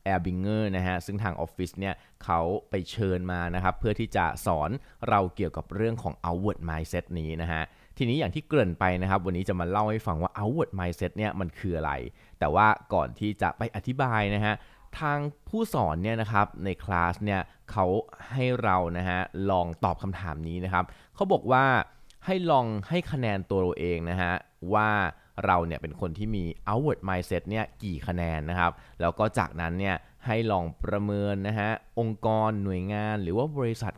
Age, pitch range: 20-39, 90-115 Hz